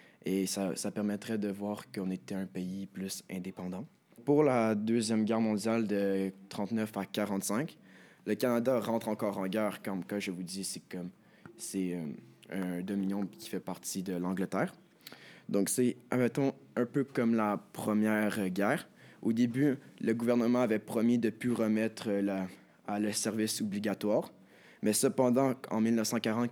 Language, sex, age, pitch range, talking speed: French, male, 20-39, 100-110 Hz, 160 wpm